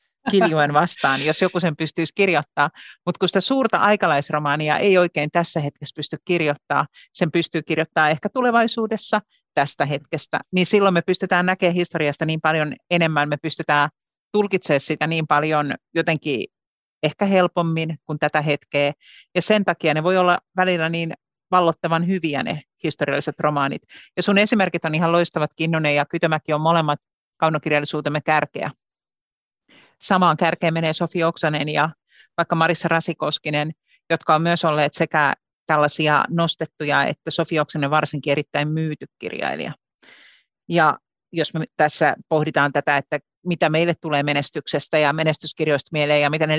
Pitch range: 150-175 Hz